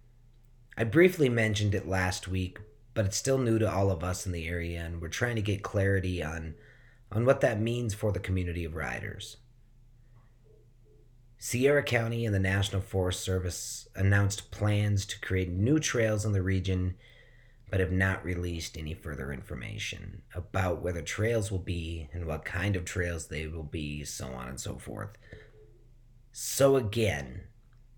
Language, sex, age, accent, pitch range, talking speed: English, male, 30-49, American, 95-120 Hz, 165 wpm